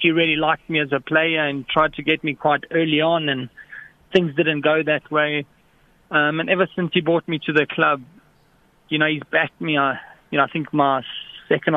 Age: 20-39